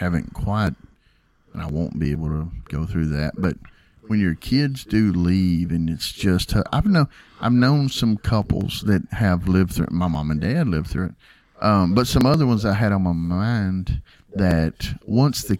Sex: male